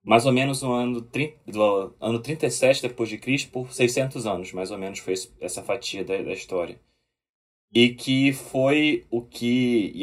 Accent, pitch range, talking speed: Brazilian, 105-130 Hz, 175 wpm